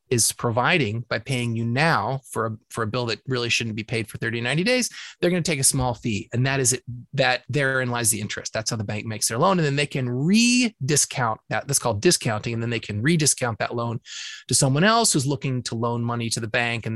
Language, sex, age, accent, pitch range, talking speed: English, male, 30-49, American, 115-145 Hz, 250 wpm